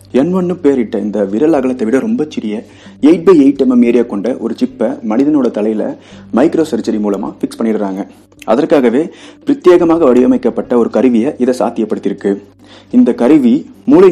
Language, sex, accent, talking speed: Tamil, male, native, 45 wpm